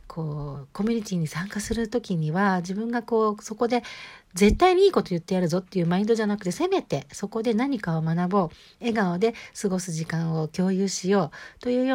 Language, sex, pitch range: Japanese, female, 165-225 Hz